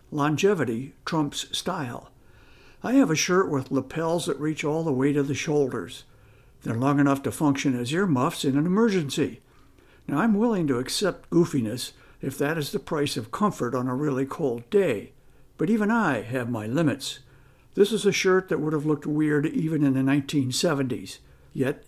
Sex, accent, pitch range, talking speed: male, American, 130-175 Hz, 180 wpm